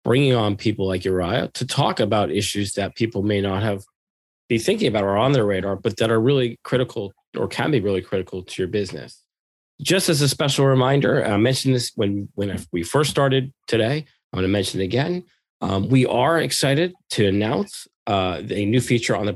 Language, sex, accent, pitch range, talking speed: English, male, American, 100-130 Hz, 205 wpm